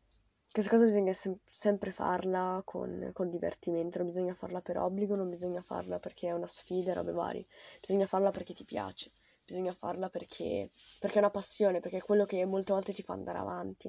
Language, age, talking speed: Italian, 20-39, 195 wpm